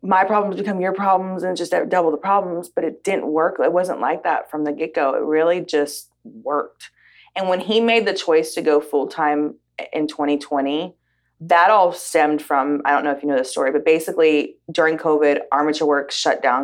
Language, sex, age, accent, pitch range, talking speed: English, female, 30-49, American, 145-160 Hz, 210 wpm